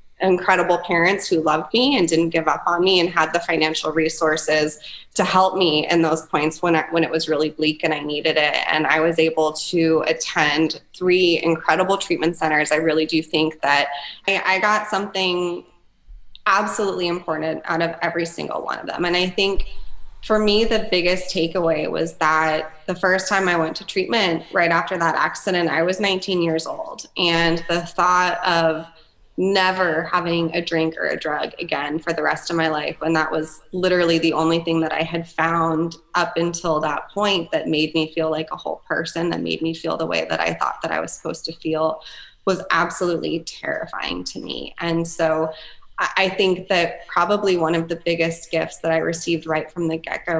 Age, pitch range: 20-39, 160-175 Hz